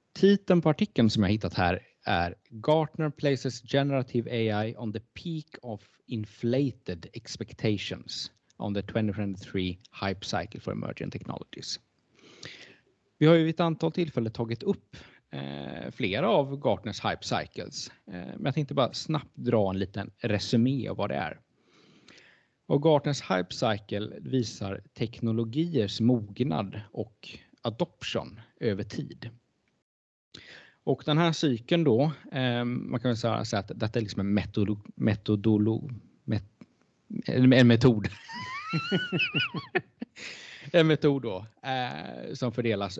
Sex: male